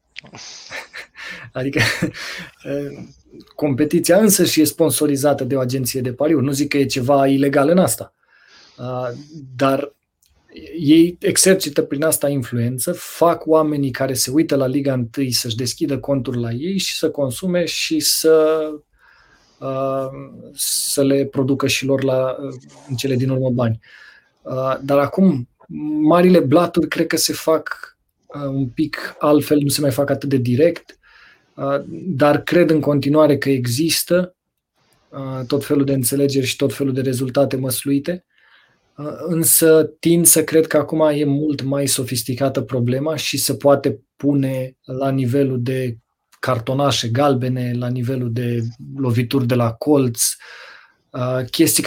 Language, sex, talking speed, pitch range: Romanian, male, 135 wpm, 130-150 Hz